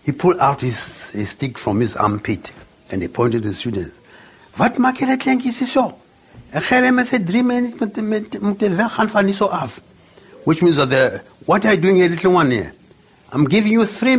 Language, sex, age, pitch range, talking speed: English, male, 60-79, 125-200 Hz, 130 wpm